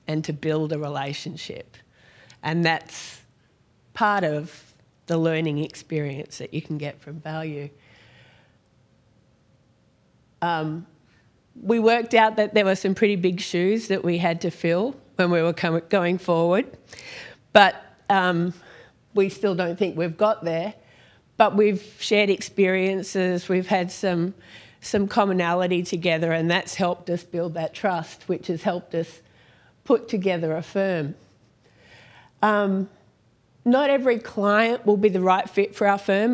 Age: 40-59